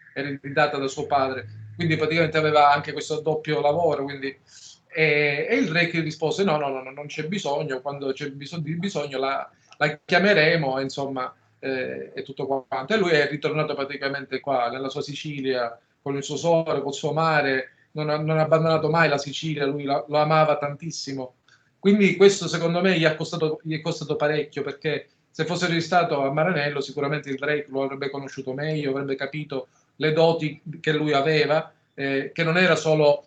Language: Italian